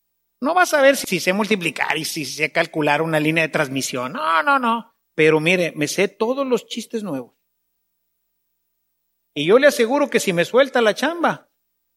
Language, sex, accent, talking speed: English, male, Mexican, 180 wpm